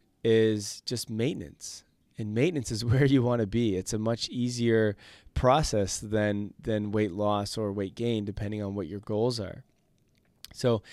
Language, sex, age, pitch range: English, male, 20-39, 100-120 Hz